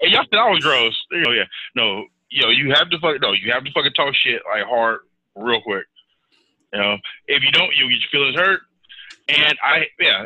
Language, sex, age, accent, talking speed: English, male, 20-39, American, 230 wpm